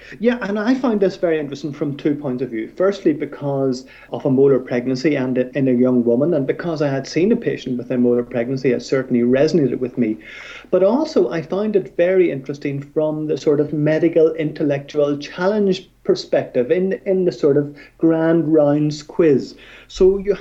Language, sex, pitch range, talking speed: English, male, 135-185 Hz, 190 wpm